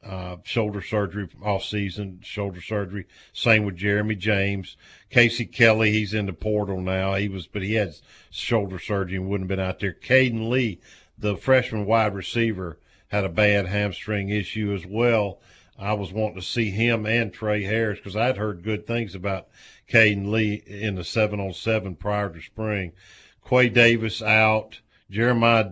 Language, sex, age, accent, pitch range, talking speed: English, male, 50-69, American, 100-115 Hz, 175 wpm